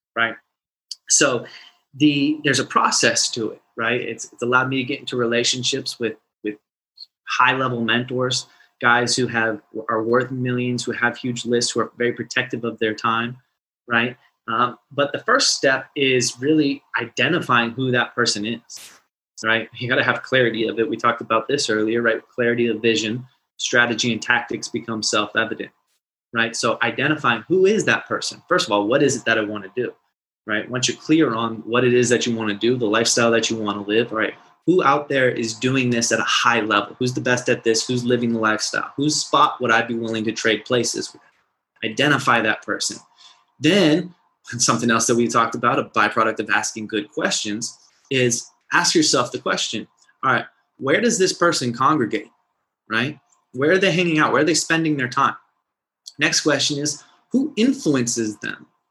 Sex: male